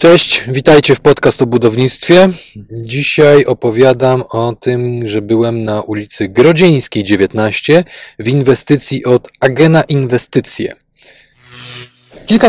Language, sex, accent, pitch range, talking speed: Polish, male, native, 120-160 Hz, 105 wpm